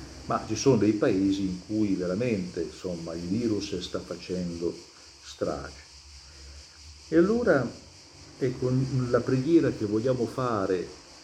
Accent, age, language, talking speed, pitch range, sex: native, 50-69, Italian, 115 wpm, 95-130 Hz, male